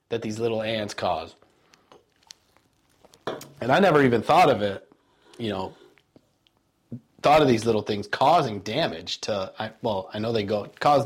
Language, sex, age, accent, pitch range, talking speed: English, male, 30-49, American, 115-155 Hz, 155 wpm